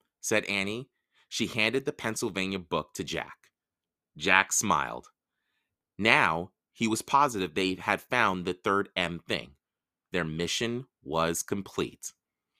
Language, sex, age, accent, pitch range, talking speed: English, male, 30-49, American, 95-145 Hz, 125 wpm